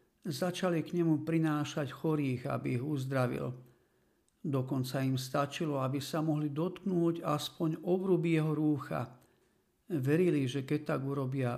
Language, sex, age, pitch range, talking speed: Slovak, male, 50-69, 135-170 Hz, 125 wpm